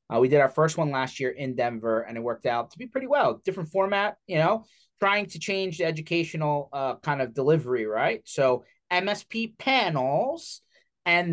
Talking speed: 190 wpm